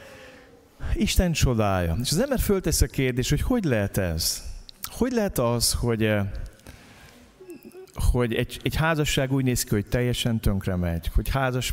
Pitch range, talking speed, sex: 95-130 Hz, 150 wpm, male